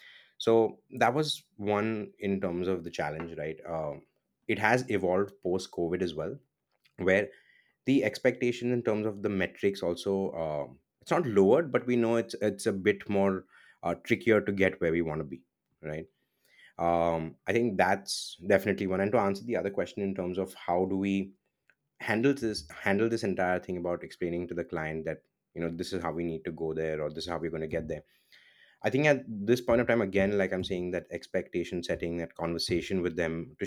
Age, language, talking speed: 20-39, English, 210 wpm